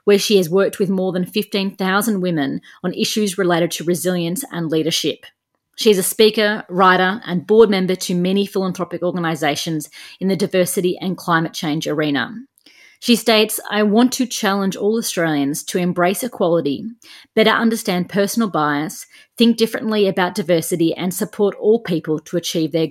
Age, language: 30-49, English